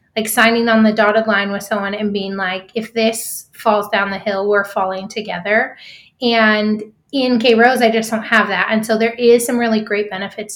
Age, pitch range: 20-39, 210-235 Hz